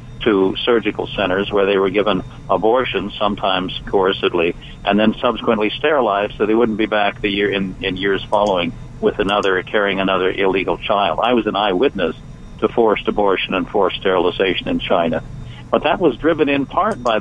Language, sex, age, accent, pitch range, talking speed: English, male, 50-69, American, 100-135 Hz, 175 wpm